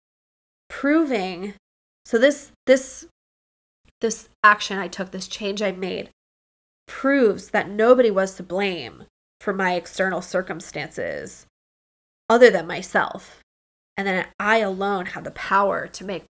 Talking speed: 125 wpm